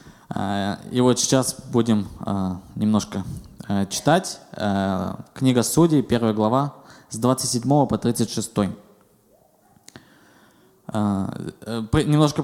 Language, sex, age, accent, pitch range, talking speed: Russian, male, 20-39, native, 110-140 Hz, 70 wpm